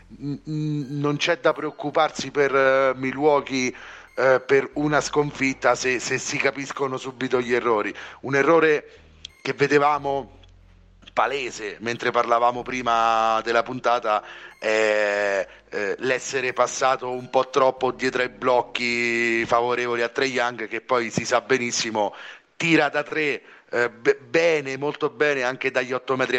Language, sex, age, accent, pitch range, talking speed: Italian, male, 40-59, native, 120-145 Hz, 135 wpm